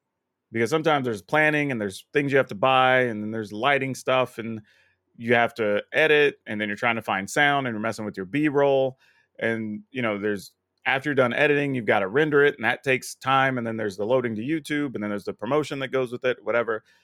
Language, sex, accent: English, male, American